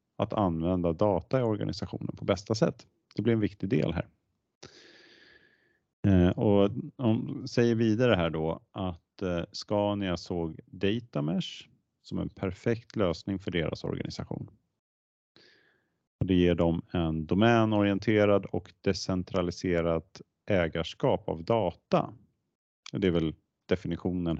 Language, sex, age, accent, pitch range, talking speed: Swedish, male, 30-49, Norwegian, 85-105 Hz, 110 wpm